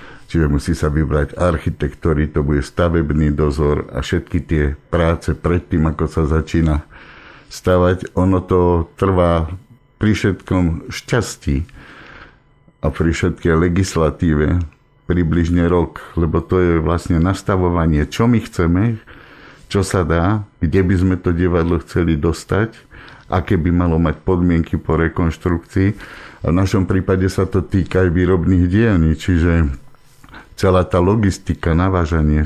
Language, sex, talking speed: Slovak, male, 130 wpm